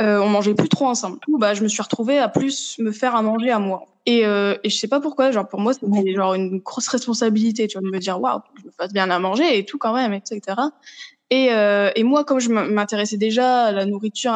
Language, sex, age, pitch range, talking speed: French, female, 20-39, 195-240 Hz, 265 wpm